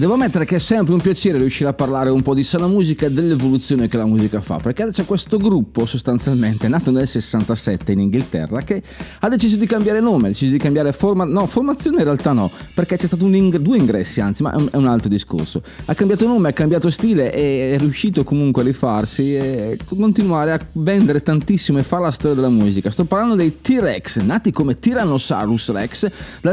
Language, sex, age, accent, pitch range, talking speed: Italian, male, 30-49, native, 120-190 Hz, 210 wpm